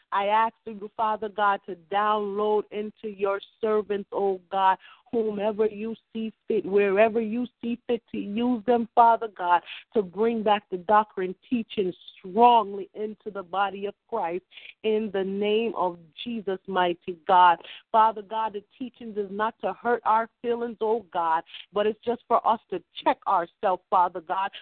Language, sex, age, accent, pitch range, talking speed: English, female, 40-59, American, 190-230 Hz, 160 wpm